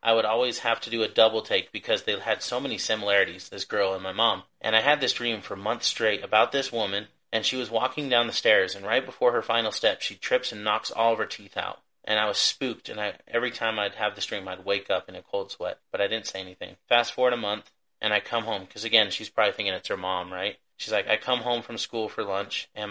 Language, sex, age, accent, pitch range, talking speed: English, male, 30-49, American, 100-115 Hz, 270 wpm